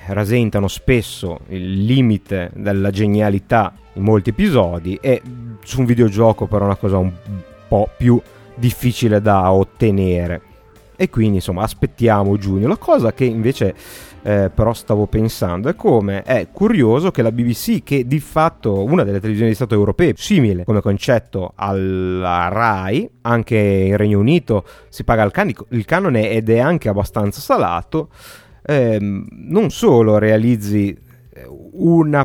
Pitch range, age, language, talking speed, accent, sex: 100-120 Hz, 30-49, Italian, 140 wpm, native, male